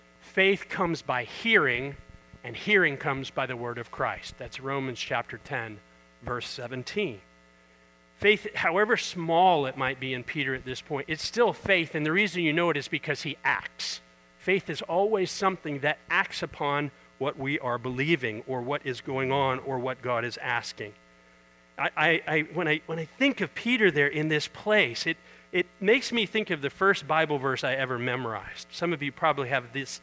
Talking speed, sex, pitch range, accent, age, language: 190 wpm, male, 125-170 Hz, American, 40-59, English